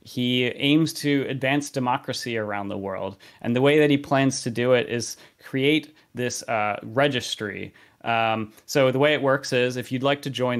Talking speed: 190 wpm